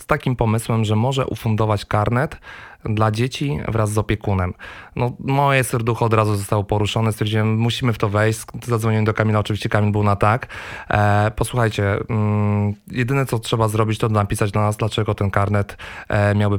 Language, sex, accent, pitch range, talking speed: Polish, male, native, 105-125 Hz, 160 wpm